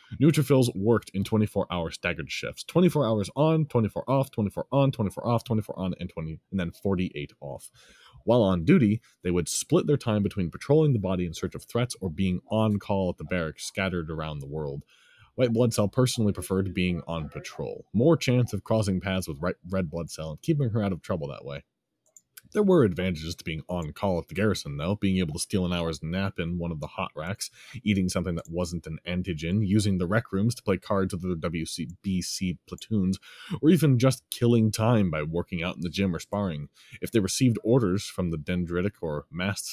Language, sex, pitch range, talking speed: English, male, 85-115 Hz, 210 wpm